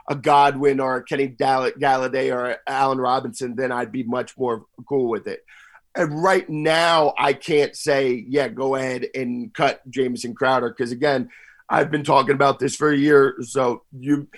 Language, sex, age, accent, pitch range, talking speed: English, male, 40-59, American, 130-155 Hz, 170 wpm